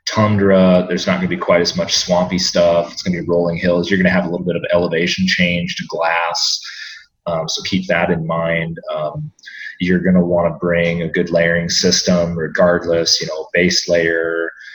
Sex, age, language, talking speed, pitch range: male, 30-49, English, 210 wpm, 85-95 Hz